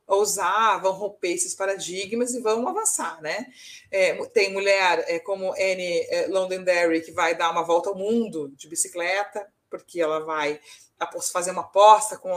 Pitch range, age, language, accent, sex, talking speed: 180-250 Hz, 30-49, Portuguese, Brazilian, female, 145 wpm